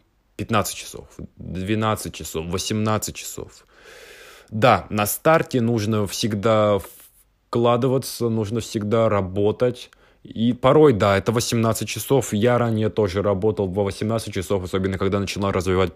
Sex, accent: male, native